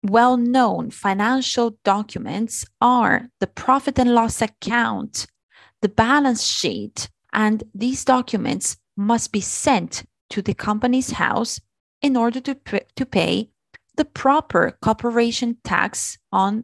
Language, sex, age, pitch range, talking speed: Italian, female, 30-49, 185-235 Hz, 120 wpm